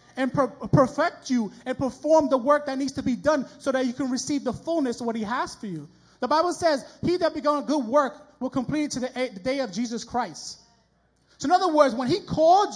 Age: 30-49